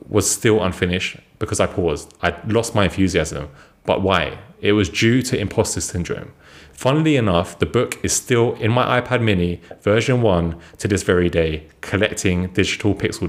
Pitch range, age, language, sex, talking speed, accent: 90-115 Hz, 30-49, English, male, 165 wpm, British